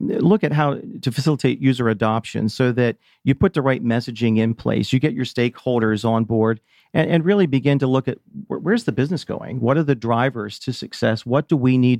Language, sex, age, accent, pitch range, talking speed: English, male, 40-59, American, 115-140 Hz, 215 wpm